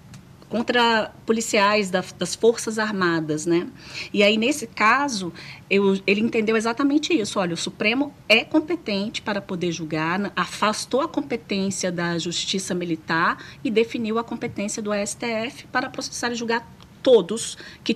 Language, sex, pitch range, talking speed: Portuguese, female, 185-230 Hz, 135 wpm